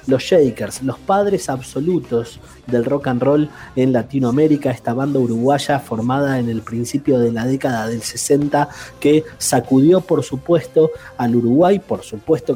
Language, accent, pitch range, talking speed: Spanish, Argentinian, 125-155 Hz, 150 wpm